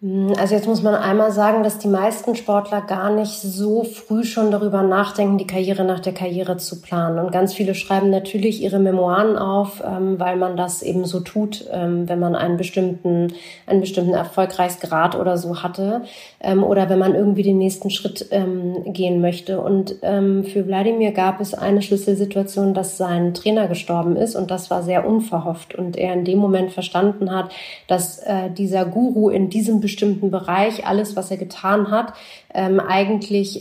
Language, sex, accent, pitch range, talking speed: German, female, German, 185-205 Hz, 170 wpm